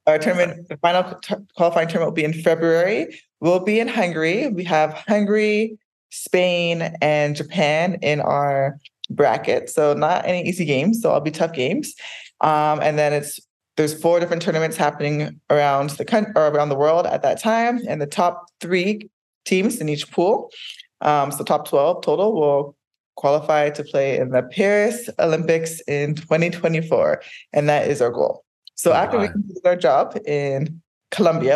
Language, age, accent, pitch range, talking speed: English, 20-39, American, 145-185 Hz, 165 wpm